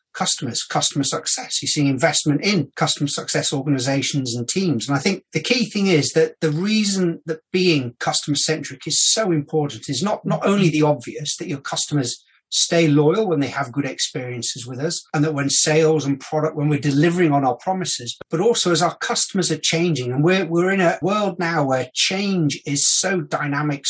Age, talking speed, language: 40-59, 195 wpm, English